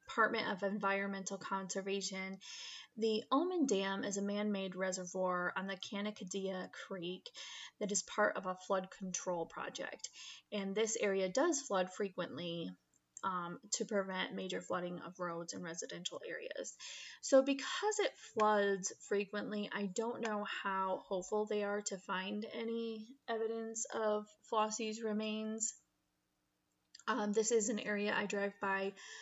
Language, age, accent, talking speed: English, 20-39, American, 135 wpm